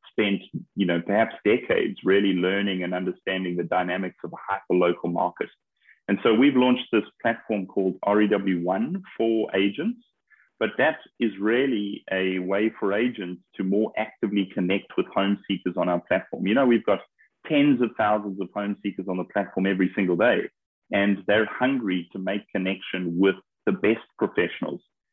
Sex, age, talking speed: male, 30-49, 165 wpm